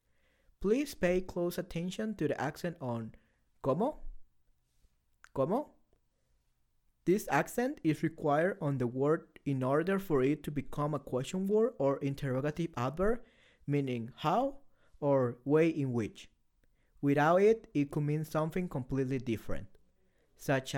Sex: male